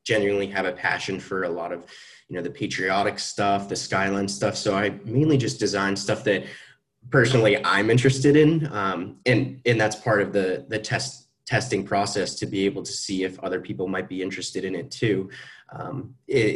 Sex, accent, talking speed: male, American, 190 wpm